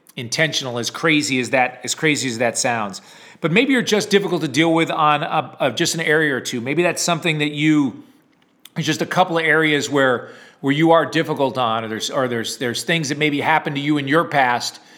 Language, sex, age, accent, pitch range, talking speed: English, male, 40-59, American, 145-170 Hz, 225 wpm